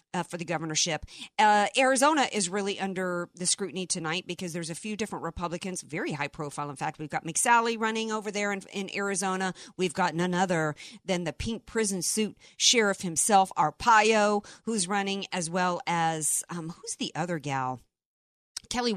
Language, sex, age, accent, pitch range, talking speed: English, female, 50-69, American, 155-200 Hz, 175 wpm